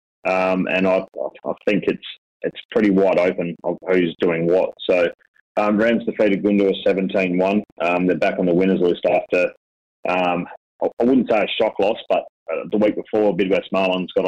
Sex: male